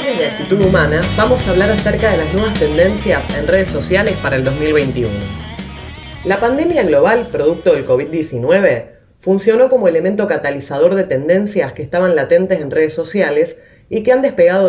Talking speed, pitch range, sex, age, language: 165 wpm, 145-195 Hz, female, 30-49, Spanish